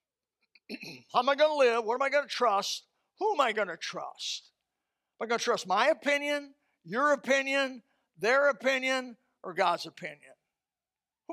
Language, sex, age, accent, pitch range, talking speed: English, male, 60-79, American, 190-275 Hz, 175 wpm